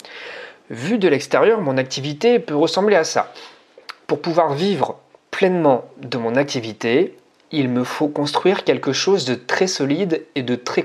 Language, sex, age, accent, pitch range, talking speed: French, male, 30-49, French, 140-195 Hz, 155 wpm